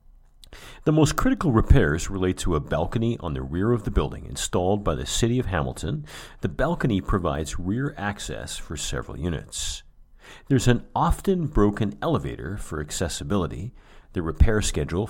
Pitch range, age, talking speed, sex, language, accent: 75-110 Hz, 40-59, 150 wpm, male, English, American